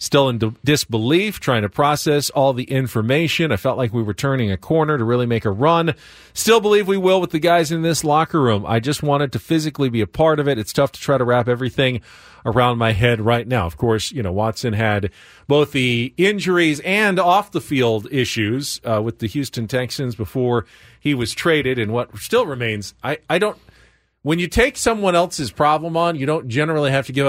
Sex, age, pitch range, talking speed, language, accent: male, 40-59, 120-165 Hz, 220 wpm, English, American